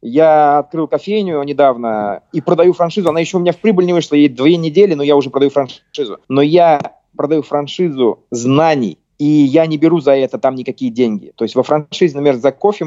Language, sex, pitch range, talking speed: Russian, male, 125-160 Hz, 205 wpm